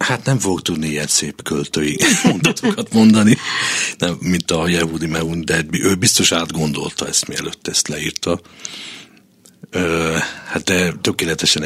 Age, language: 50-69, Hungarian